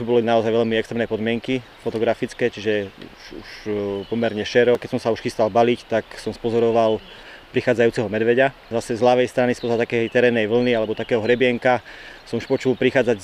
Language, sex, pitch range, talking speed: Slovak, male, 110-125 Hz, 175 wpm